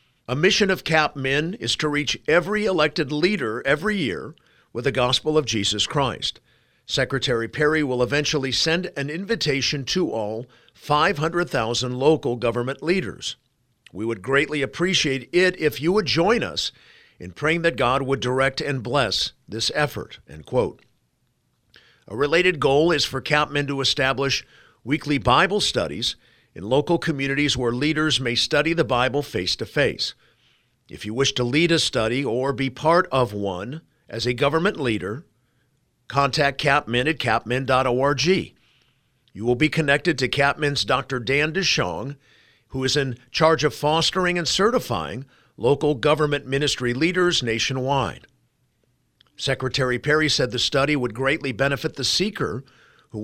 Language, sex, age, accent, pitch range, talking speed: English, male, 50-69, American, 125-155 Hz, 145 wpm